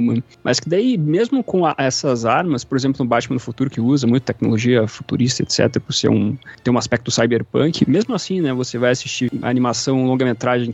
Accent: Brazilian